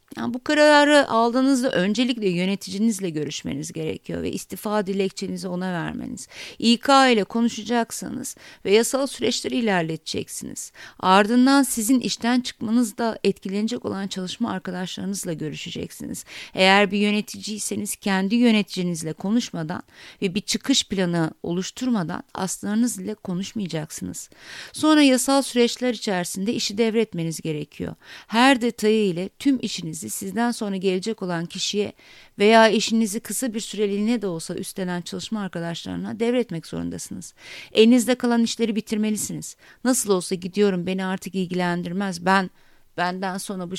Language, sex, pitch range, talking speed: Turkish, female, 185-230 Hz, 120 wpm